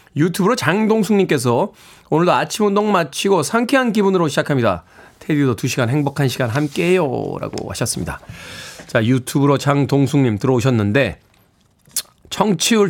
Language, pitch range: Korean, 140-200 Hz